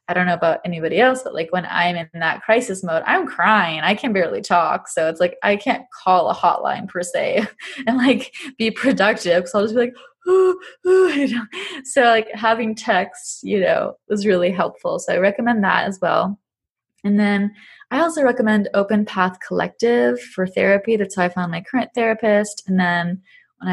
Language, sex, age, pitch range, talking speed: English, female, 20-39, 175-230 Hz, 195 wpm